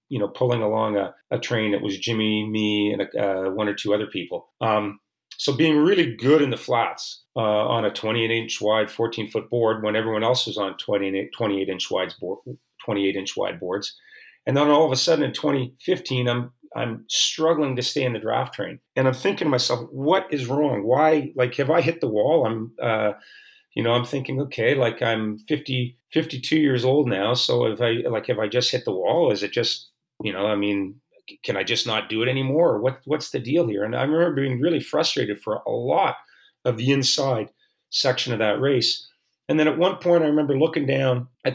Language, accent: English, American